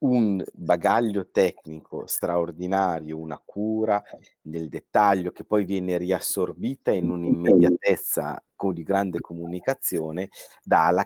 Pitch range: 90-105 Hz